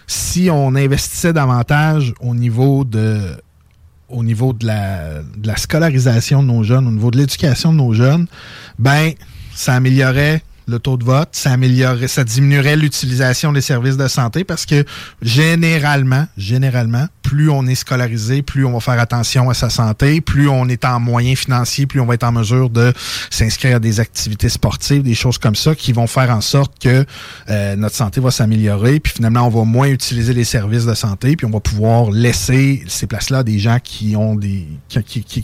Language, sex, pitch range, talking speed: French, male, 115-140 Hz, 195 wpm